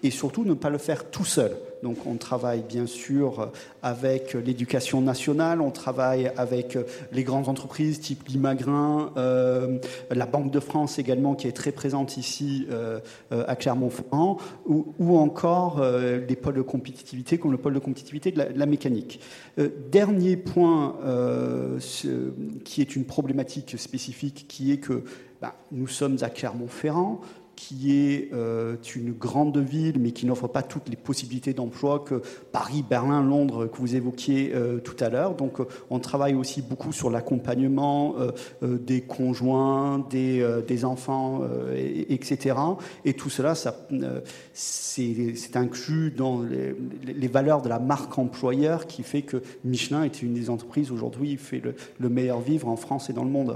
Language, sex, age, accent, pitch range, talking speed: French, male, 40-59, French, 125-145 Hz, 175 wpm